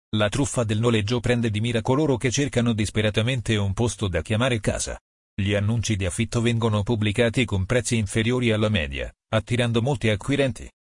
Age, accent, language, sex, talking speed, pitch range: 40-59, native, Italian, male, 165 wpm, 105-120 Hz